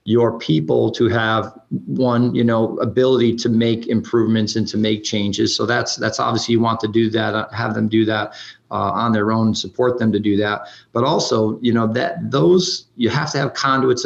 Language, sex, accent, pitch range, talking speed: English, male, American, 110-125 Hz, 205 wpm